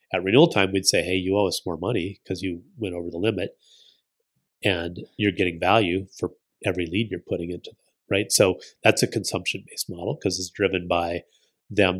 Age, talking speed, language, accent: 30-49, 195 wpm, English, American